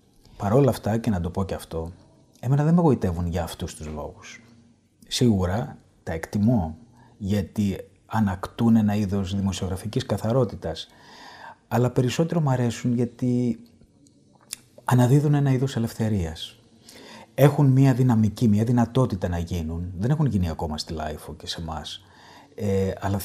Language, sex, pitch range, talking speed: Greek, male, 95-125 Hz, 135 wpm